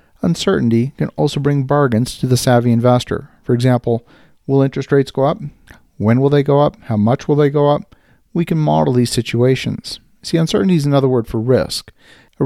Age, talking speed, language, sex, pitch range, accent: 50-69, 195 wpm, English, male, 120-145 Hz, American